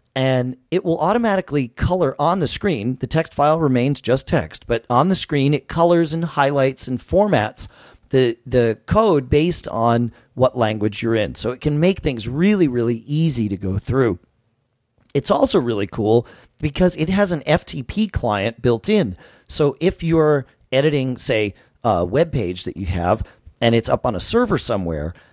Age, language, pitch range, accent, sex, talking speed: 40-59, English, 115-155 Hz, American, male, 175 wpm